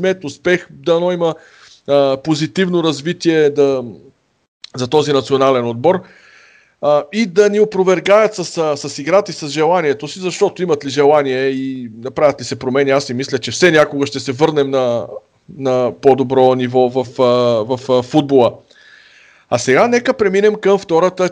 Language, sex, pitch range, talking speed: Bulgarian, male, 135-175 Hz, 160 wpm